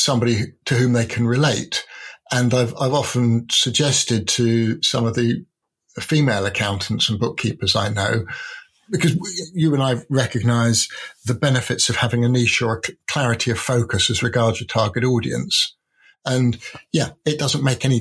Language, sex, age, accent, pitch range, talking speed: English, male, 50-69, British, 115-140 Hz, 165 wpm